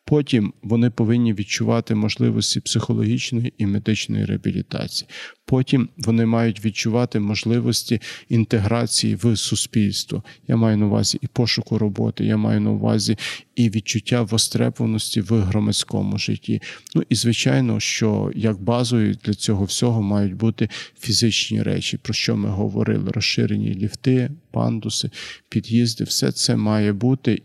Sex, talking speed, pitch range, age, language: male, 130 wpm, 110-120 Hz, 40-59, Ukrainian